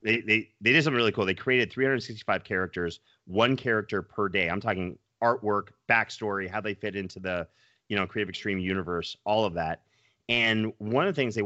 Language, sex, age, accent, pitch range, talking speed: English, male, 30-49, American, 95-115 Hz, 200 wpm